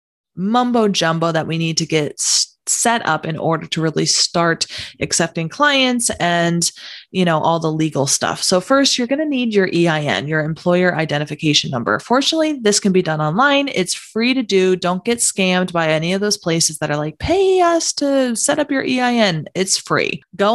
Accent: American